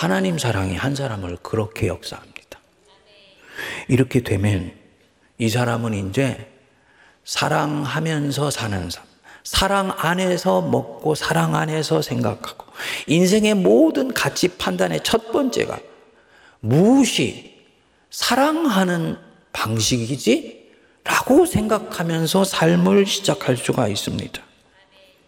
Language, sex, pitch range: Korean, male, 135-220 Hz